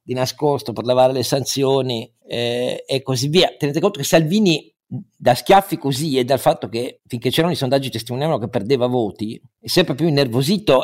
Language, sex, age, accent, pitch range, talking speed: Italian, male, 50-69, native, 120-160 Hz, 185 wpm